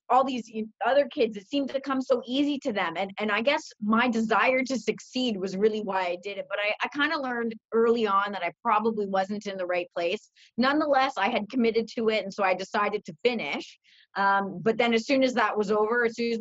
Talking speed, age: 240 wpm, 30-49